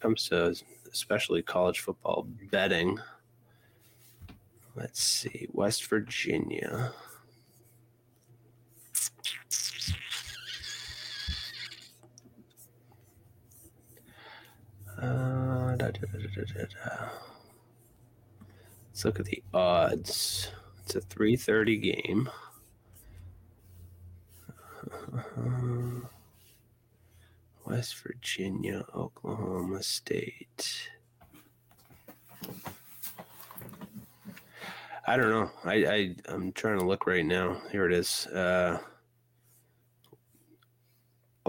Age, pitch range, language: 30-49, 100-120 Hz, English